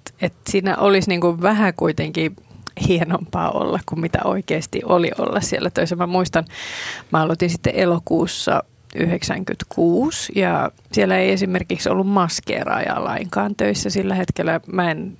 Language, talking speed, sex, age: Finnish, 135 wpm, female, 30-49